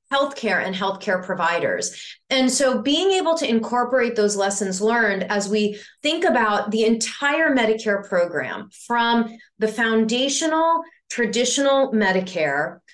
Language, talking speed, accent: English, 120 wpm, American